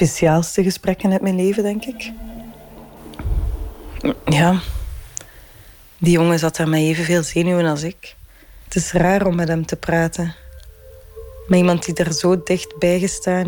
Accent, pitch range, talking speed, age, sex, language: Dutch, 120-195 Hz, 145 wpm, 20-39, female, Dutch